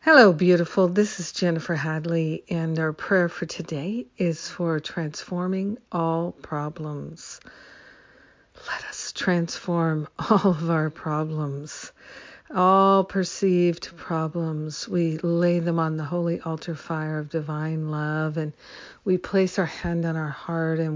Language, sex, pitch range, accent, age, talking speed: English, female, 155-180 Hz, American, 60-79, 130 wpm